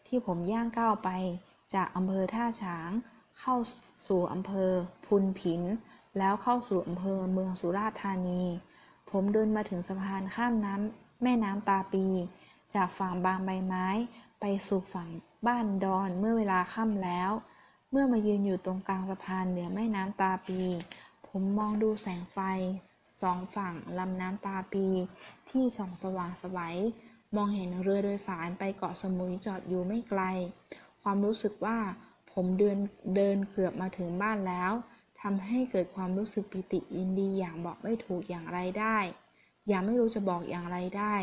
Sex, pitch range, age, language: female, 185-210 Hz, 20-39, Thai